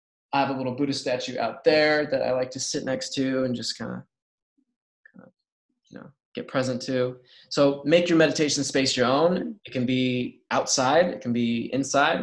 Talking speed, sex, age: 190 wpm, male, 20-39